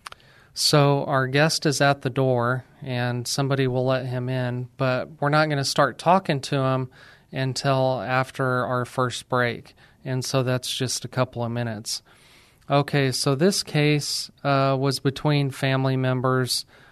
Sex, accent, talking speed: male, American, 155 wpm